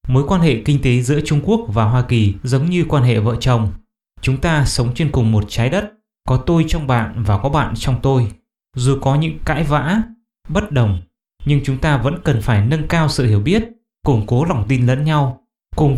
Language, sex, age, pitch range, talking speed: English, male, 20-39, 125-165 Hz, 220 wpm